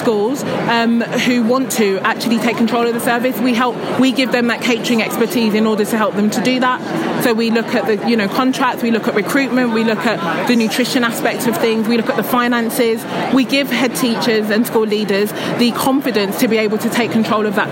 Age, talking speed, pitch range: 20-39, 235 wpm, 220-250 Hz